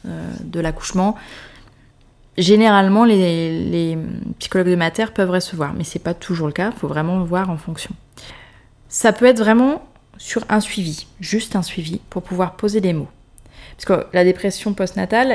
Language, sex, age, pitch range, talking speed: French, female, 20-39, 160-195 Hz, 170 wpm